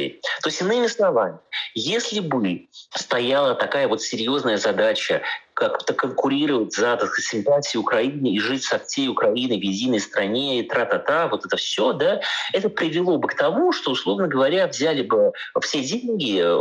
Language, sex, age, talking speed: Russian, male, 30-49, 150 wpm